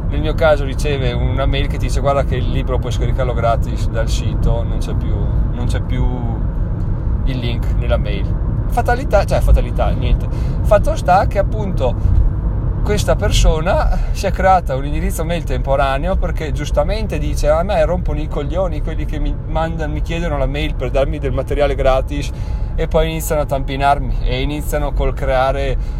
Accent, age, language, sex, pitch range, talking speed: native, 30-49, Italian, male, 115-140 Hz, 165 wpm